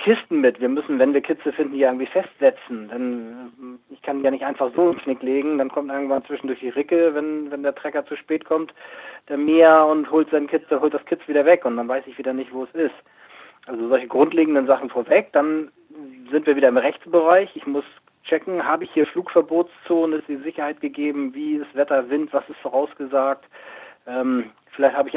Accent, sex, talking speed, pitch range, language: German, male, 205 wpm, 135-165 Hz, German